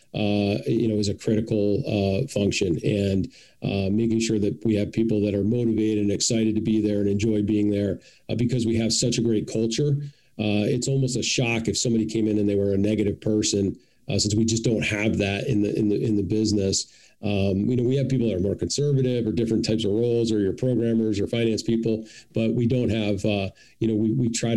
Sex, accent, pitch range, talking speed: male, American, 105-115 Hz, 235 wpm